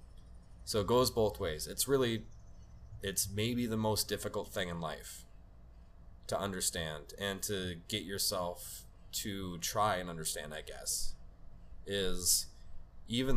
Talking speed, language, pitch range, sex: 130 wpm, English, 90-105 Hz, male